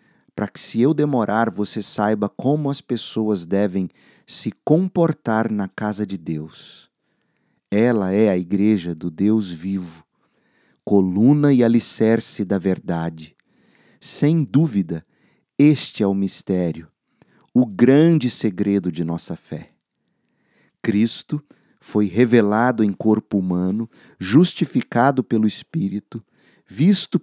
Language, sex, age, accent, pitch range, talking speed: Portuguese, male, 50-69, Brazilian, 100-125 Hz, 110 wpm